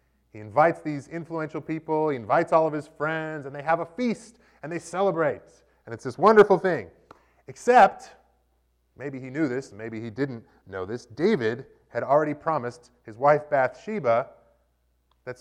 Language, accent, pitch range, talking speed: English, American, 115-165 Hz, 165 wpm